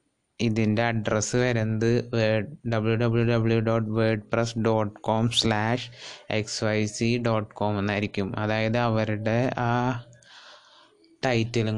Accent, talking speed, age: native, 115 wpm, 20-39